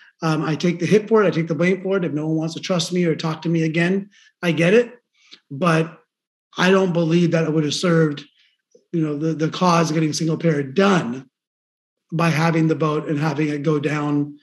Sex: male